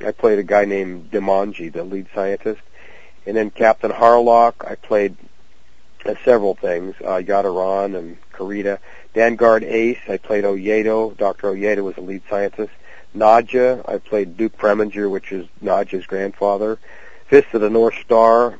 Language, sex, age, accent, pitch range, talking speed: English, male, 50-69, American, 95-110 Hz, 150 wpm